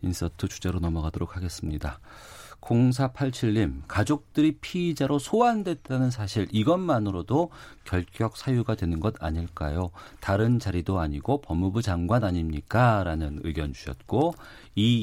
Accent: native